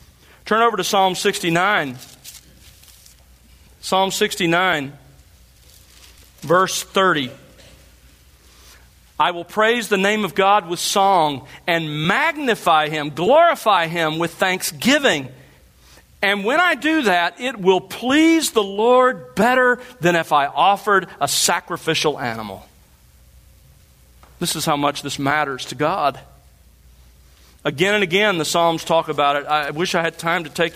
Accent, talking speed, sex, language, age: American, 130 wpm, male, English, 40-59